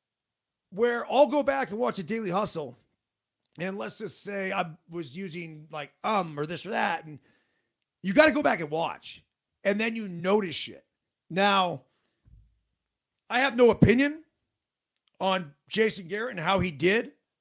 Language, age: English, 40-59